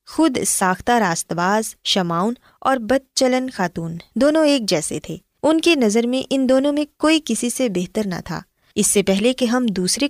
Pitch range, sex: 180-250 Hz, female